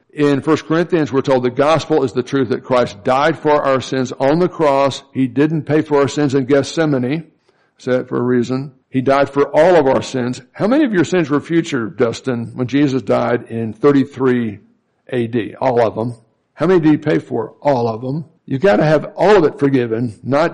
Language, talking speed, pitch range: English, 215 wpm, 125-145 Hz